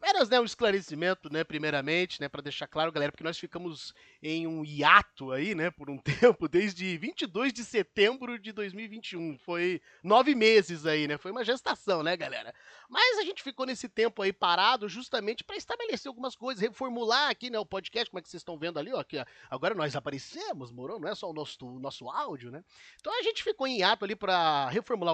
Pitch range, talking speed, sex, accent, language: 155-245 Hz, 210 wpm, male, Brazilian, Portuguese